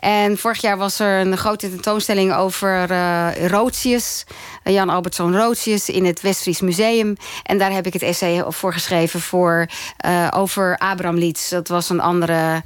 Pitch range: 180-215 Hz